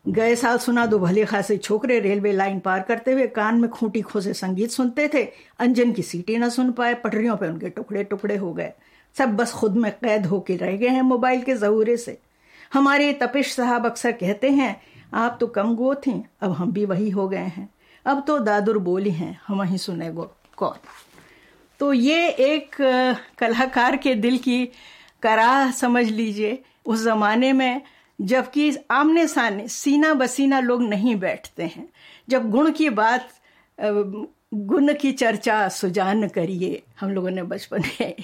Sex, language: female, Hindi